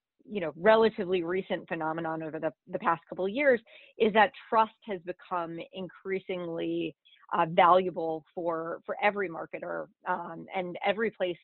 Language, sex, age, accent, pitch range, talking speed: English, female, 30-49, American, 170-195 Hz, 145 wpm